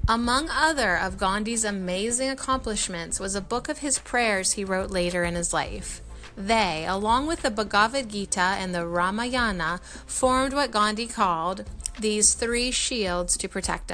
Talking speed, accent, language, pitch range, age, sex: 155 wpm, American, English, 185-240 Hz, 30-49, female